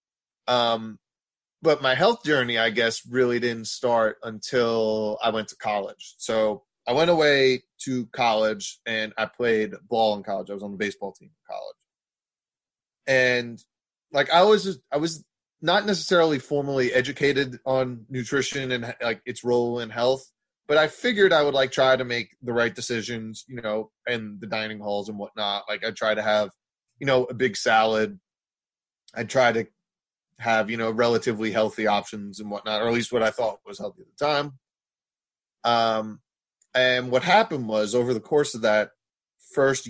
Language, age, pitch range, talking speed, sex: English, 20-39, 110-135 Hz, 175 wpm, male